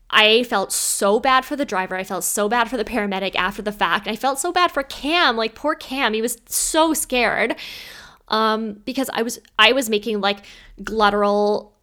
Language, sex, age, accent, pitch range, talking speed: English, female, 10-29, American, 195-245 Hz, 200 wpm